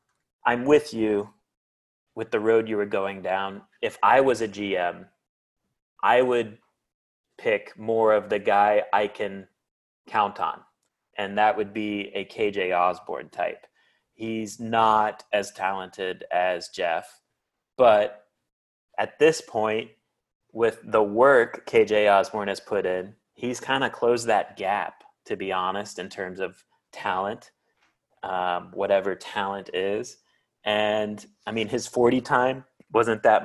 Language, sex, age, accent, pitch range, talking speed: English, male, 30-49, American, 100-120 Hz, 140 wpm